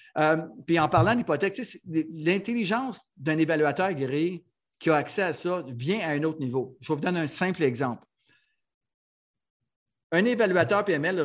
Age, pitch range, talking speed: 50-69, 145-190 Hz, 165 wpm